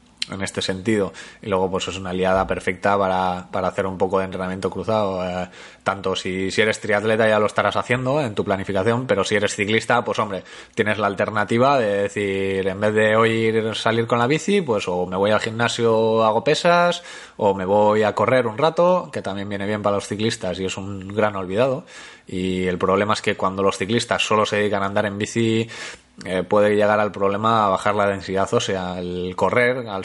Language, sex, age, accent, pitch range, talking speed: Spanish, male, 20-39, Spanish, 95-115 Hz, 210 wpm